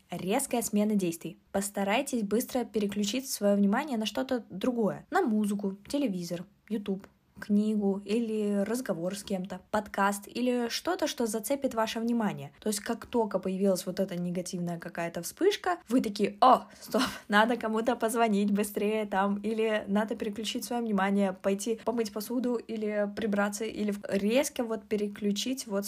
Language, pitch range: Russian, 200-235 Hz